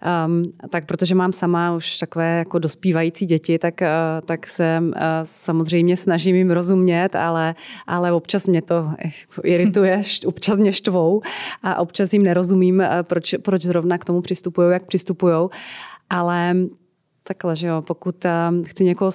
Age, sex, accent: 30-49, female, native